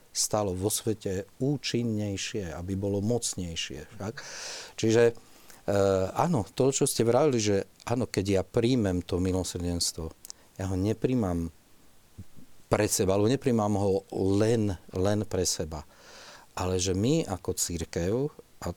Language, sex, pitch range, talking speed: Slovak, male, 95-120 Hz, 130 wpm